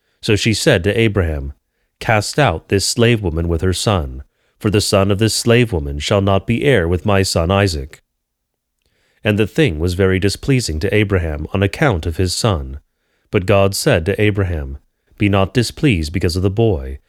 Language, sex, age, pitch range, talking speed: English, male, 30-49, 85-110 Hz, 185 wpm